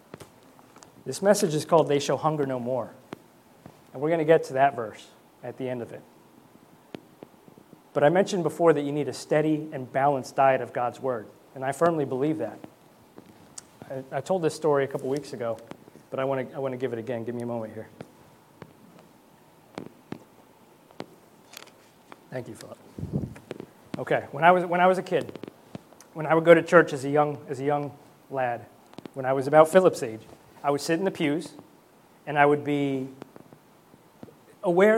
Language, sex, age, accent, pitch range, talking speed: English, male, 30-49, American, 130-155 Hz, 185 wpm